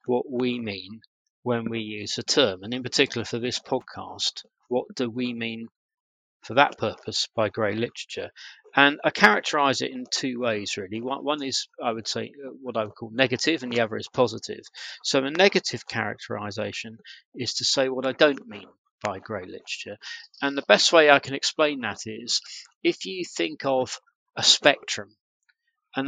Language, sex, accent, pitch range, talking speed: English, male, British, 110-140 Hz, 180 wpm